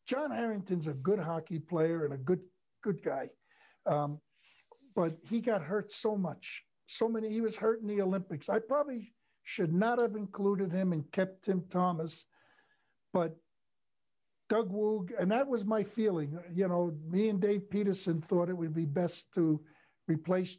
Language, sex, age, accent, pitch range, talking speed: English, male, 60-79, American, 165-205 Hz, 170 wpm